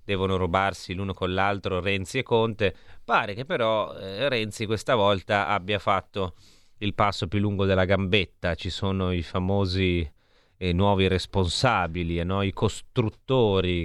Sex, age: male, 30-49